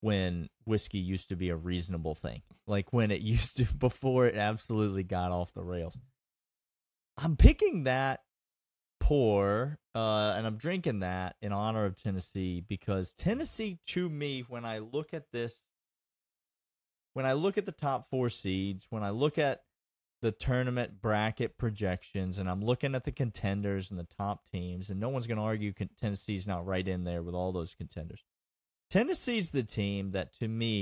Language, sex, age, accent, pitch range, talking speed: English, male, 30-49, American, 95-130 Hz, 175 wpm